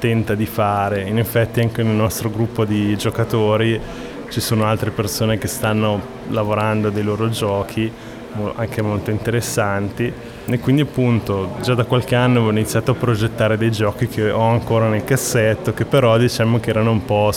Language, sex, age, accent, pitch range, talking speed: Italian, male, 20-39, native, 100-115 Hz, 170 wpm